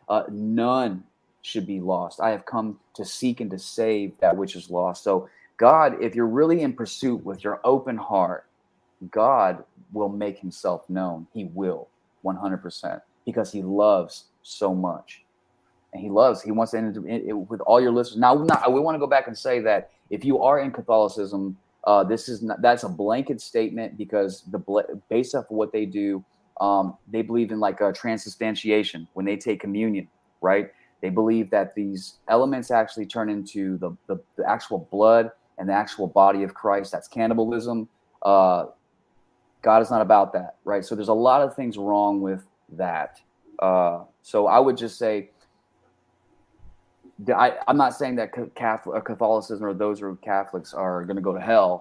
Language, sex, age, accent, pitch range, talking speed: English, male, 30-49, American, 95-115 Hz, 180 wpm